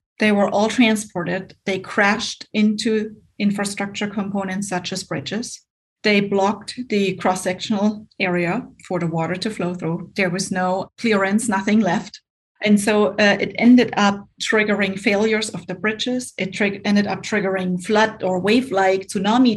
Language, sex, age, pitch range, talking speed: English, female, 30-49, 185-215 Hz, 150 wpm